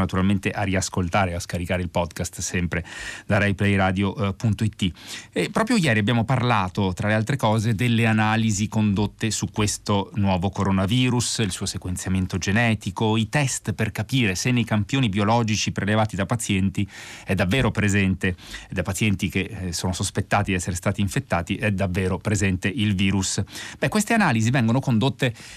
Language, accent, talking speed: Italian, native, 145 wpm